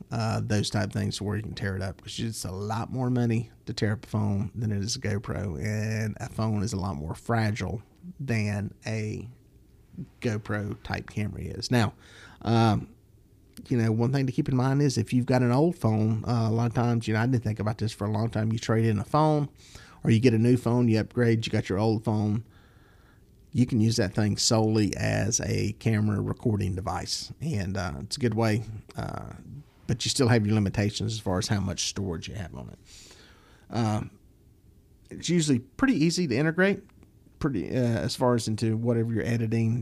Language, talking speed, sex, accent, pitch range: English, 210 wpm, male, American, 105-120 Hz